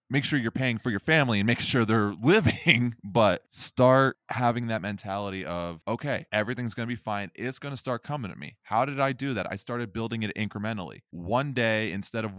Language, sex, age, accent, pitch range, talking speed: English, male, 20-39, American, 100-125 Hz, 220 wpm